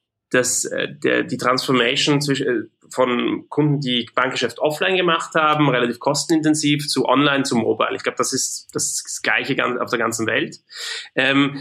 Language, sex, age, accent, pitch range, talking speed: German, male, 20-39, German, 125-155 Hz, 150 wpm